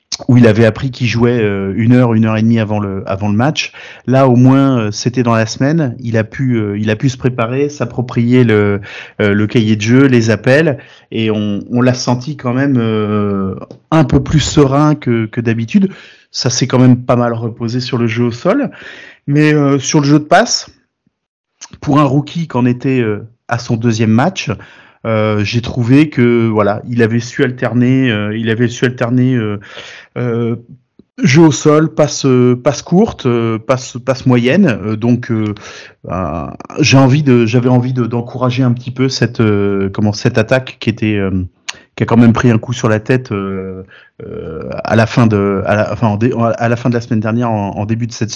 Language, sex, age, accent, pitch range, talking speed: French, male, 30-49, French, 110-130 Hz, 195 wpm